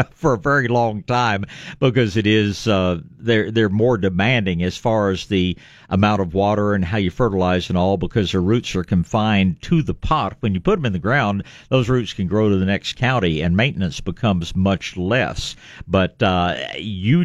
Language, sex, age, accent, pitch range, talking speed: English, male, 50-69, American, 95-125 Hz, 200 wpm